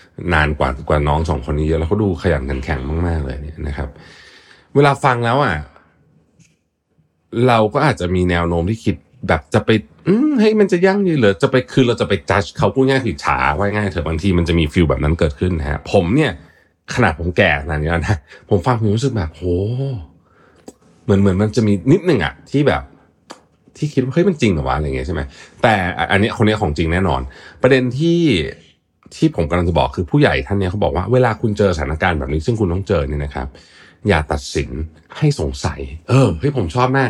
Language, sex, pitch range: Thai, male, 80-125 Hz